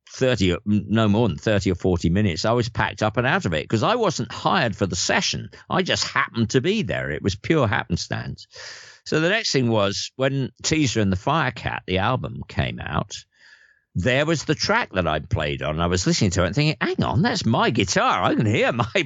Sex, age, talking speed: male, 50-69, 225 wpm